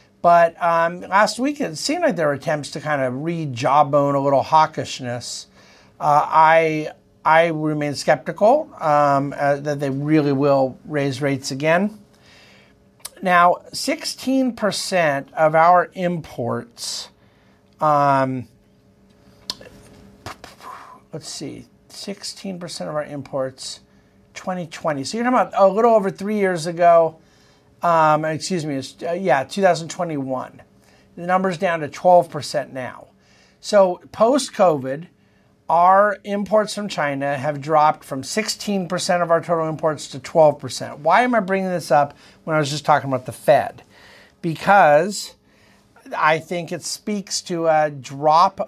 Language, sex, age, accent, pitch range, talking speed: English, male, 50-69, American, 145-180 Hz, 130 wpm